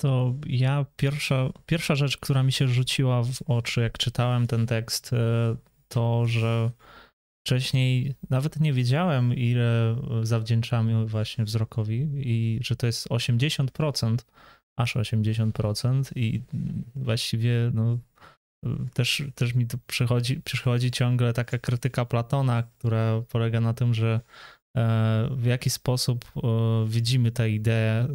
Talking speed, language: 120 wpm, Polish